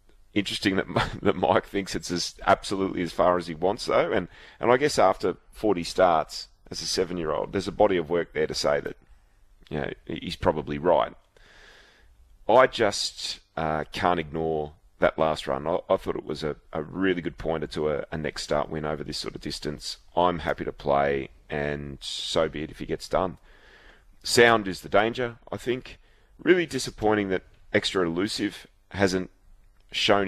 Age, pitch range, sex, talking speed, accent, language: 30-49, 80-105 Hz, male, 180 wpm, Australian, English